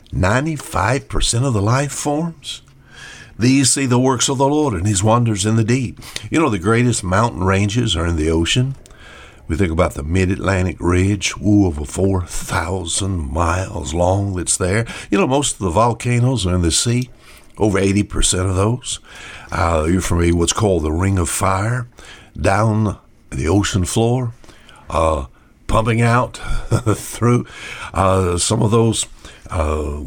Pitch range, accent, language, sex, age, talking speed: 90-120 Hz, American, English, male, 60-79, 160 wpm